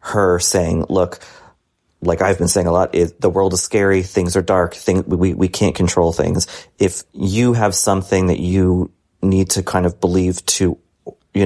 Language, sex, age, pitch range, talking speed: English, male, 30-49, 85-95 Hz, 190 wpm